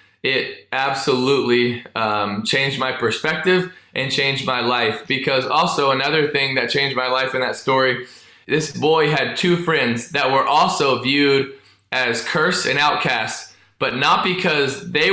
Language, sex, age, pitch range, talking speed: English, male, 20-39, 130-155 Hz, 150 wpm